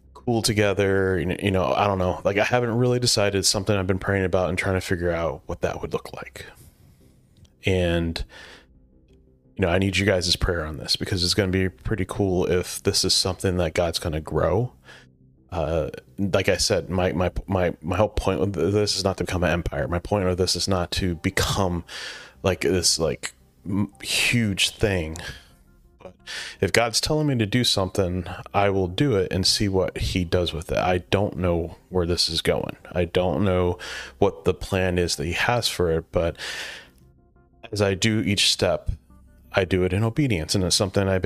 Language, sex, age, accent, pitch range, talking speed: English, male, 30-49, American, 85-100 Hz, 200 wpm